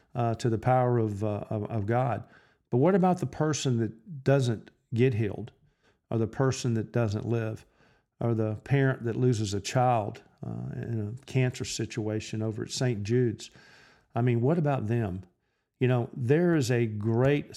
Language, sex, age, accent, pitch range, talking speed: English, male, 50-69, American, 110-135 Hz, 175 wpm